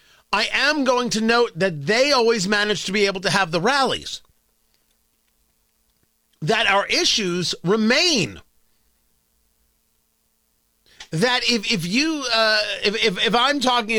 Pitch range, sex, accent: 185-255 Hz, male, American